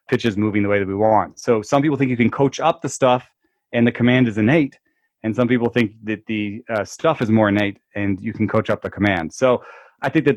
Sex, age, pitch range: male, 30-49, 110-130 Hz